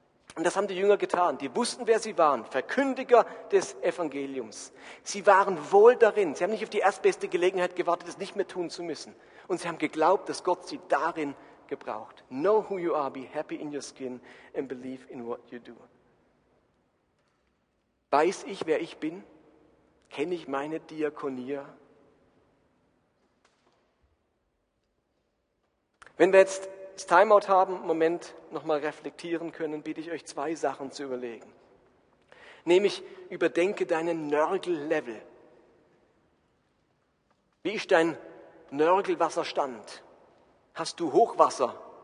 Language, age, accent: German, 40-59, German